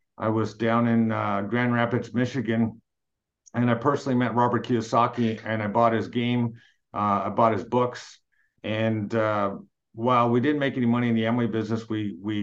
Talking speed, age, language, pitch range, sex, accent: 185 wpm, 50-69, English, 110-125 Hz, male, American